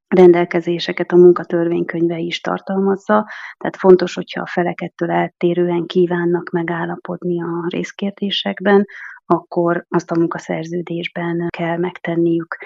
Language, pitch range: Hungarian, 170-185 Hz